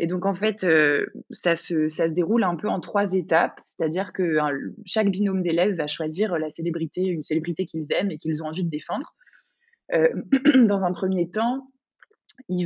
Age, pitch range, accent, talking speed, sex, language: 20-39, 155-195 Hz, French, 195 wpm, female, French